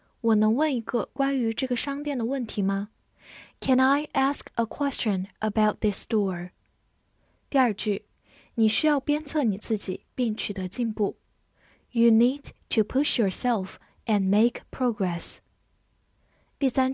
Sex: female